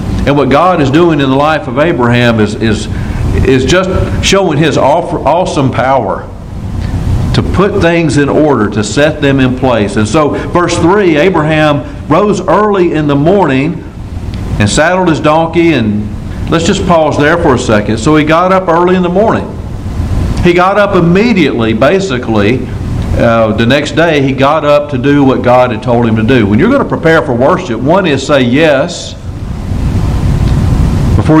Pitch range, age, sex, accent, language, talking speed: 110-155 Hz, 50-69, male, American, English, 175 wpm